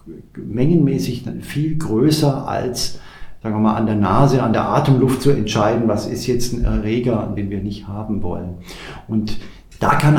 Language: German